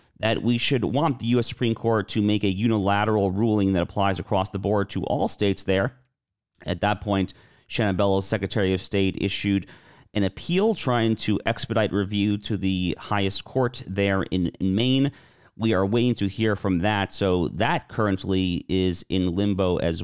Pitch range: 95-115 Hz